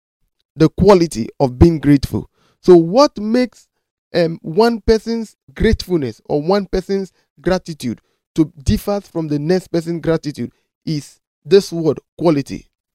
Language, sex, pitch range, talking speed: English, male, 150-195 Hz, 125 wpm